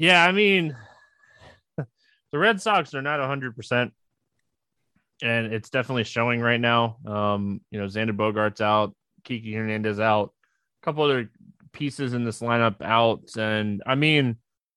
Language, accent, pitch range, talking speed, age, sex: English, American, 115-150 Hz, 140 wpm, 20-39, male